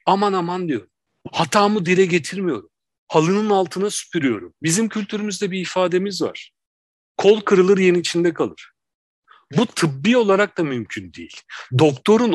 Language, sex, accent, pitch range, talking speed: Turkish, male, native, 150-195 Hz, 125 wpm